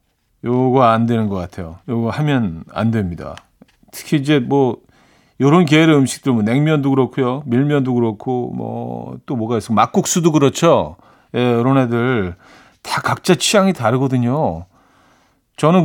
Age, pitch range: 40-59, 115-155 Hz